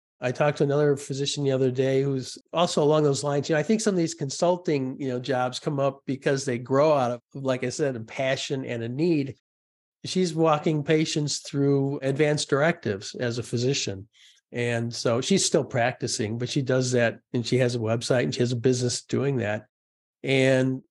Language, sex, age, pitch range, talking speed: English, male, 50-69, 115-140 Hz, 200 wpm